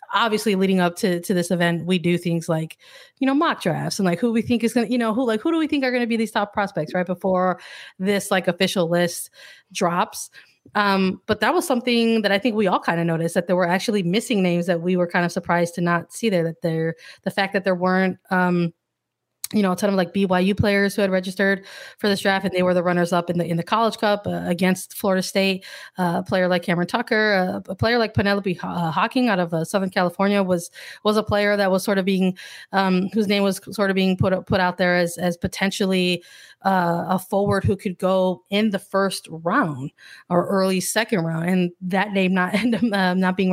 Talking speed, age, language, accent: 235 wpm, 20-39, English, American